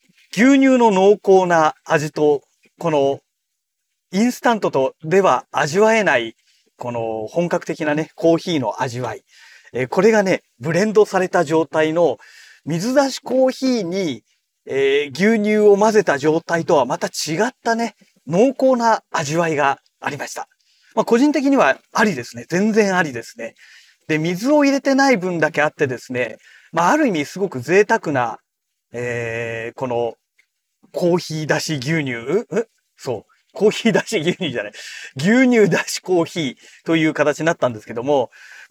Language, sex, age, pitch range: Japanese, male, 40-59, 150-220 Hz